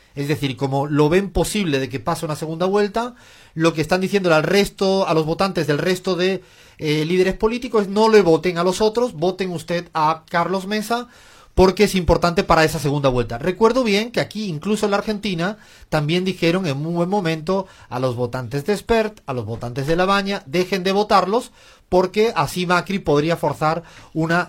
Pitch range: 140-190 Hz